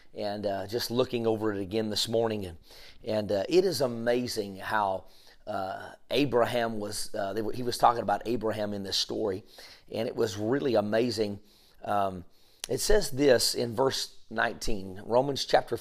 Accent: American